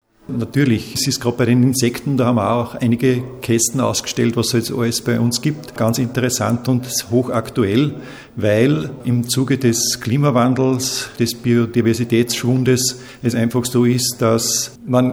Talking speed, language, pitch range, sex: 150 wpm, German, 115-130 Hz, male